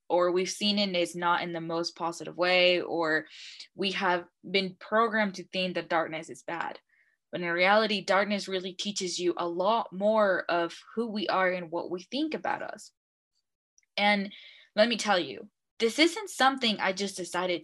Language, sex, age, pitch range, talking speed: English, female, 20-39, 175-205 Hz, 185 wpm